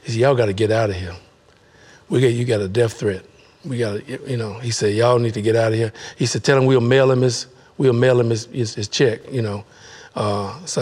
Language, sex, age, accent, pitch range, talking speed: English, male, 50-69, American, 115-130 Hz, 270 wpm